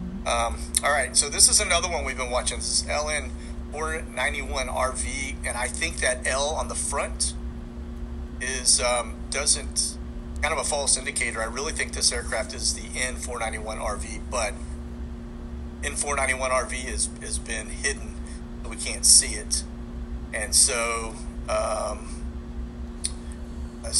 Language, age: Thai, 40-59